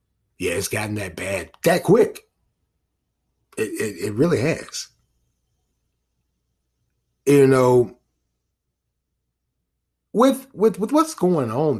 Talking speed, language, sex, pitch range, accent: 100 wpm, English, male, 95-150 Hz, American